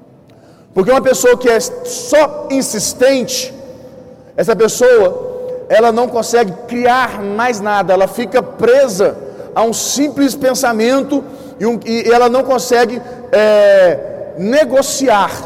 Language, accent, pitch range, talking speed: Portuguese, Brazilian, 210-255 Hz, 110 wpm